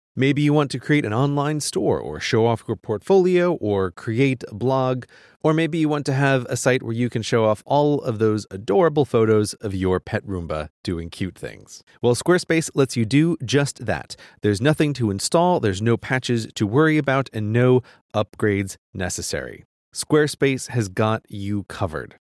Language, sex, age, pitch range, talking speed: English, male, 30-49, 100-140 Hz, 185 wpm